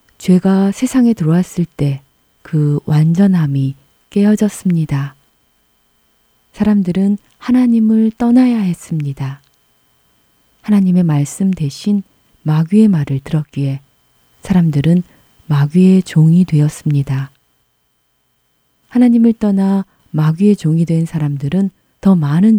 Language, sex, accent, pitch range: Korean, female, native, 135-190 Hz